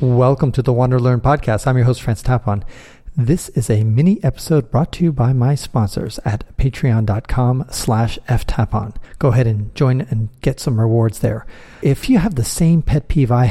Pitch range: 115-145 Hz